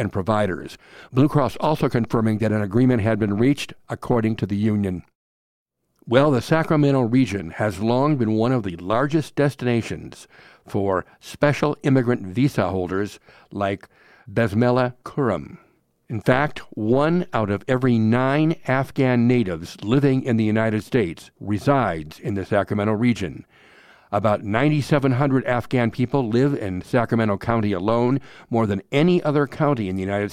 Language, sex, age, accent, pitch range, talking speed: English, male, 60-79, American, 105-135 Hz, 140 wpm